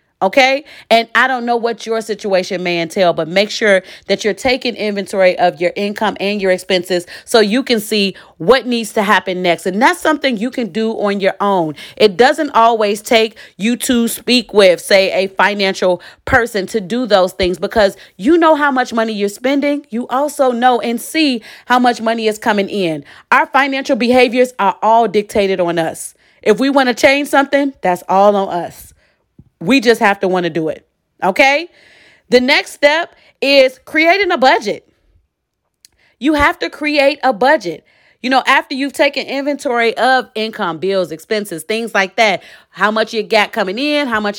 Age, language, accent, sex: 30-49, English, American, female